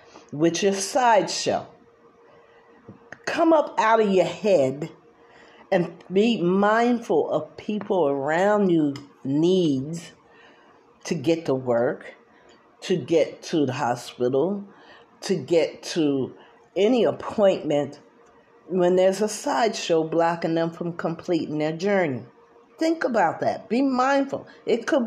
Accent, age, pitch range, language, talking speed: American, 50-69, 145-200 Hz, English, 115 wpm